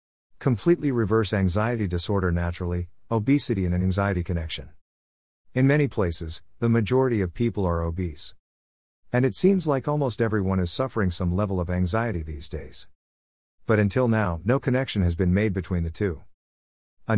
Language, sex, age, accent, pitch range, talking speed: English, male, 50-69, American, 85-110 Hz, 155 wpm